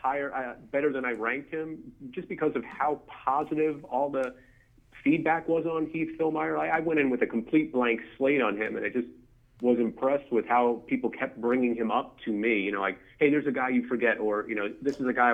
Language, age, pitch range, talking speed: English, 30-49, 115-140 Hz, 235 wpm